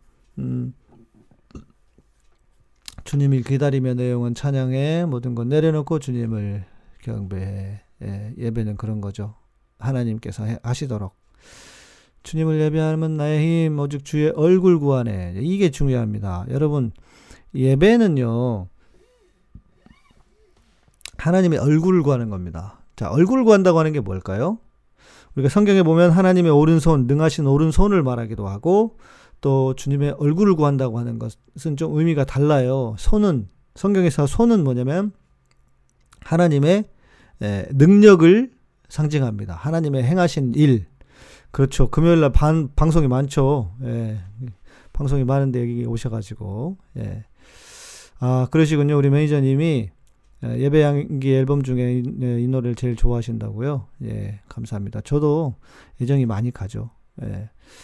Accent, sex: native, male